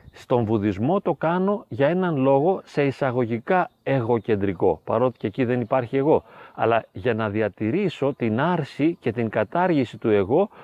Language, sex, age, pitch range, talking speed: Greek, male, 30-49, 120-170 Hz, 150 wpm